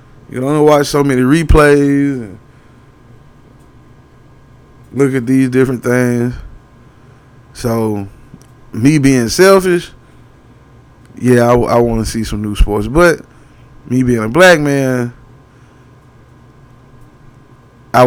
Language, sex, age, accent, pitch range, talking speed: English, male, 20-39, American, 125-145 Hz, 115 wpm